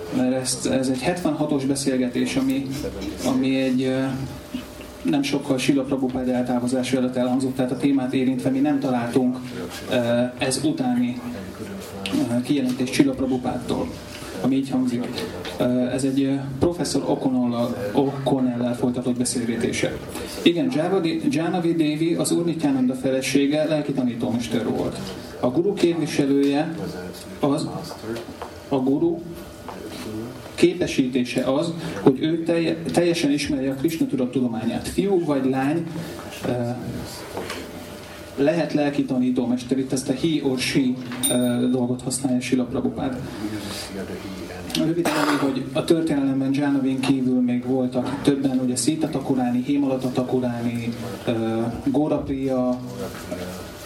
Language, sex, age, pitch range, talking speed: Hungarian, male, 30-49, 125-145 Hz, 100 wpm